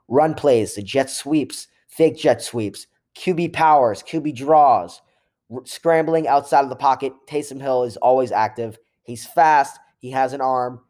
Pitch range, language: 115-145 Hz, English